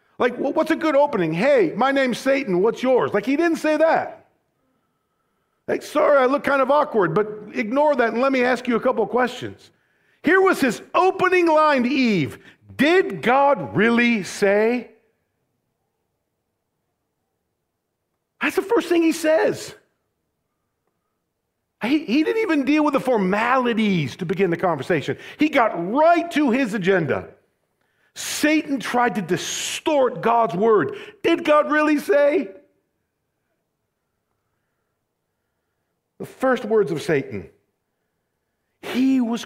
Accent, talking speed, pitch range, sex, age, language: American, 130 wpm, 195-290 Hz, male, 50-69, English